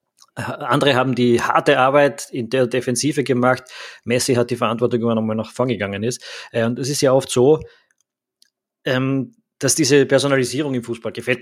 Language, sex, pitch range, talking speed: German, male, 115-130 Hz, 170 wpm